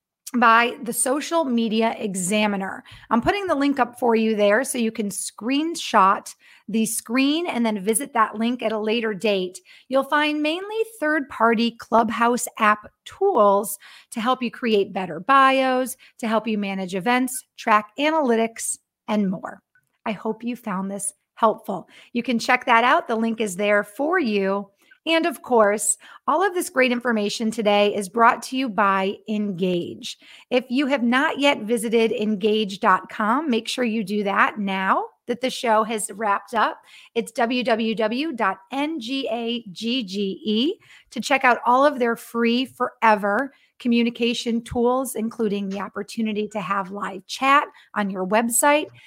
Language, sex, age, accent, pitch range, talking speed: English, female, 30-49, American, 210-260 Hz, 150 wpm